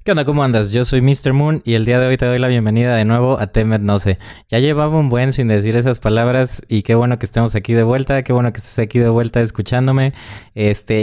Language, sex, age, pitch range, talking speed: Spanish, male, 20-39, 110-135 Hz, 255 wpm